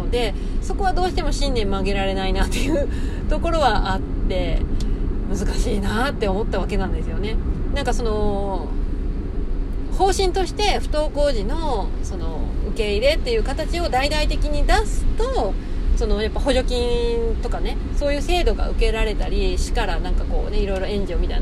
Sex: female